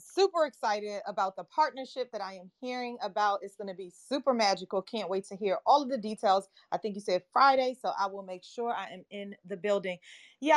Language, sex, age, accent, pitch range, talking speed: English, female, 30-49, American, 195-245 Hz, 225 wpm